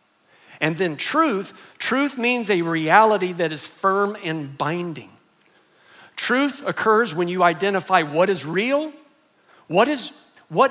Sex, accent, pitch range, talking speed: male, American, 175-245 Hz, 120 wpm